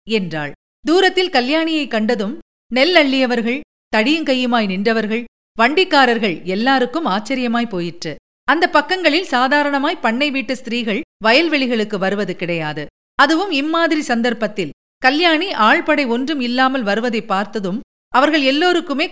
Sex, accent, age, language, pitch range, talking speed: female, native, 50-69, Tamil, 215-295 Hz, 95 wpm